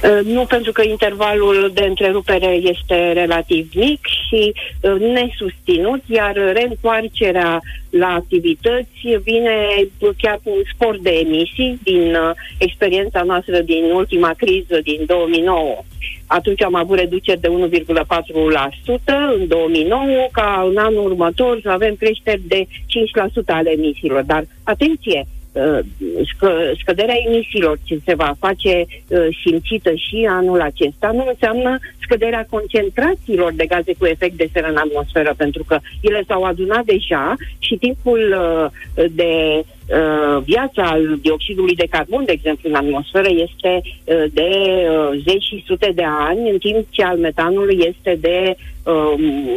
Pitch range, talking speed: 170-215 Hz, 130 wpm